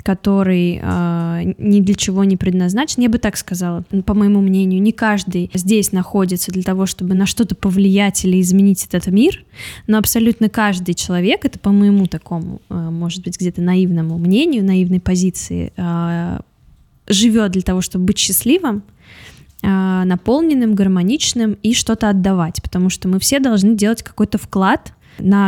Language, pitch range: Russian, 185-220 Hz